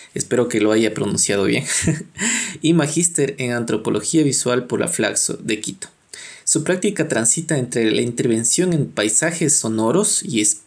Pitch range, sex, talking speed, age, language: 115-165 Hz, male, 150 wpm, 20-39, Spanish